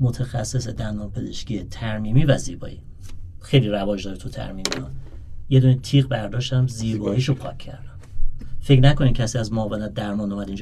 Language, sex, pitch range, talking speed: Persian, male, 100-130 Hz, 155 wpm